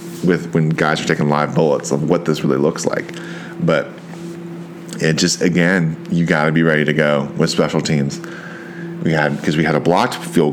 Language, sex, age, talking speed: English, male, 30-49, 195 wpm